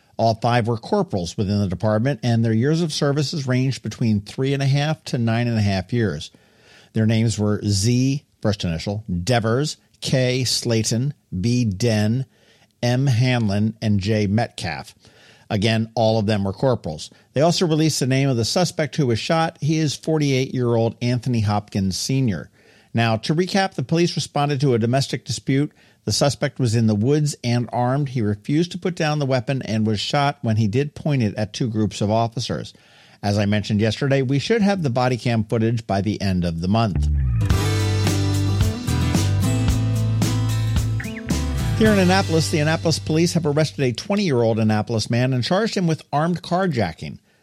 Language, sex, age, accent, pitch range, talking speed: English, male, 50-69, American, 110-140 Hz, 170 wpm